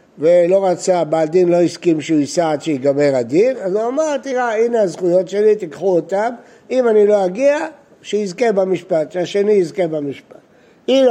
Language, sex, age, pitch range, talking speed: Hebrew, male, 60-79, 170-240 Hz, 160 wpm